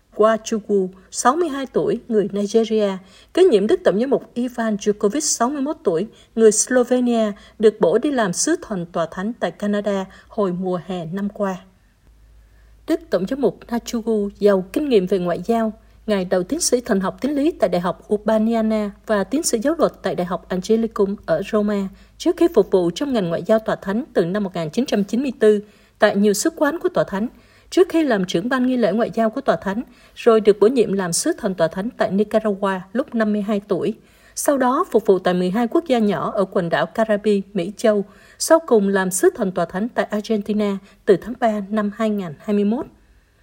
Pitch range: 195-235 Hz